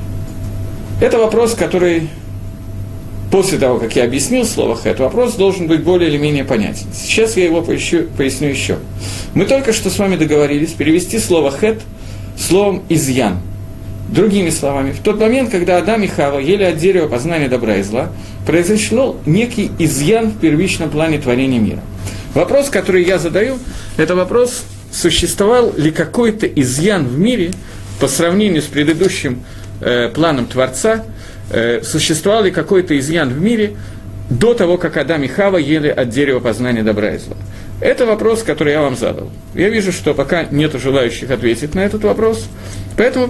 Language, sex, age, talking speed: Russian, male, 40-59, 155 wpm